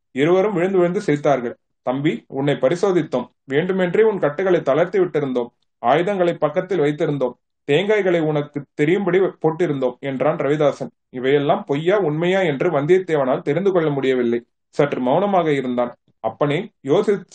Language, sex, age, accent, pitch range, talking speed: Tamil, male, 30-49, native, 145-190 Hz, 120 wpm